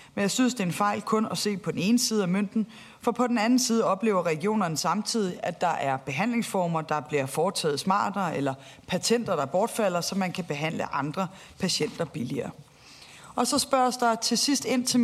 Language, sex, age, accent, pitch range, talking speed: Danish, female, 30-49, native, 170-230 Hz, 205 wpm